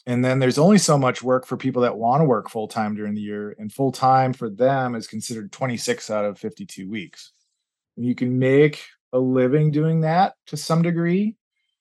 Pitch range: 110-140 Hz